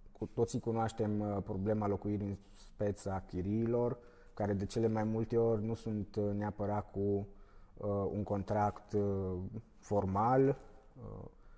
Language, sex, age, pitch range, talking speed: Romanian, male, 20-39, 100-125 Hz, 135 wpm